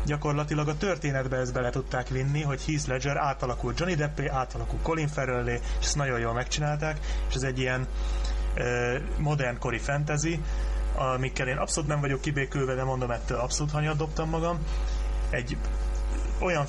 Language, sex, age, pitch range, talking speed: Hungarian, male, 30-49, 120-145 Hz, 155 wpm